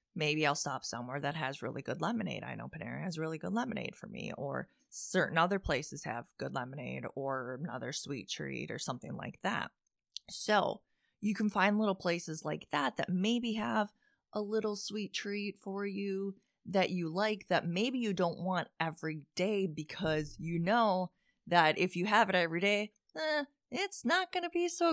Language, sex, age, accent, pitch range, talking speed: English, female, 20-39, American, 165-215 Hz, 185 wpm